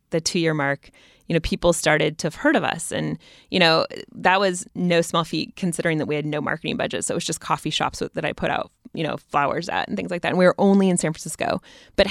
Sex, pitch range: female, 150-185 Hz